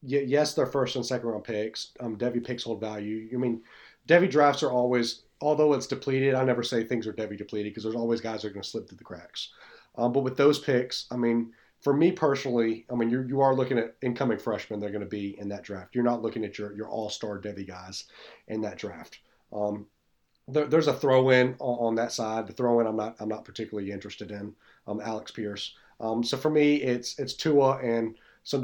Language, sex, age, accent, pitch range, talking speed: English, male, 30-49, American, 105-125 Hz, 235 wpm